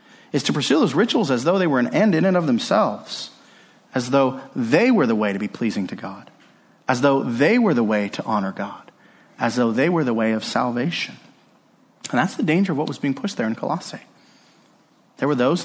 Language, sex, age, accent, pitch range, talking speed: English, male, 30-49, American, 125-205 Hz, 225 wpm